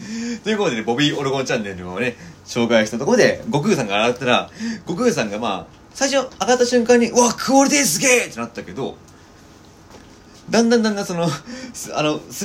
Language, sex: Japanese, male